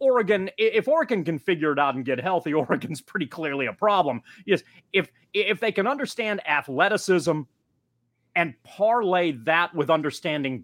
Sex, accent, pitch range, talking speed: male, American, 135-185 Hz, 150 wpm